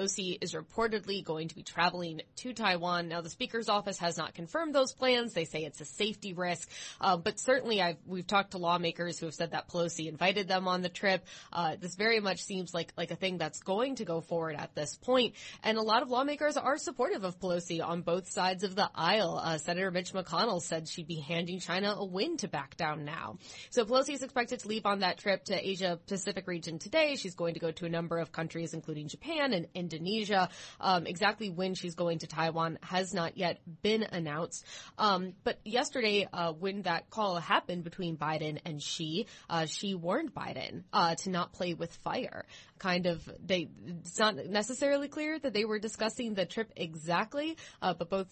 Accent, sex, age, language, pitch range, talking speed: American, female, 20-39, English, 165-205 Hz, 210 wpm